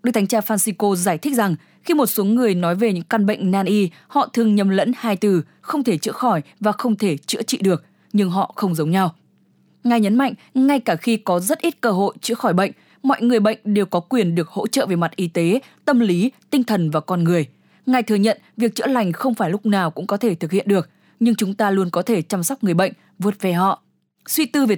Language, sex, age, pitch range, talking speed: English, female, 10-29, 185-235 Hz, 255 wpm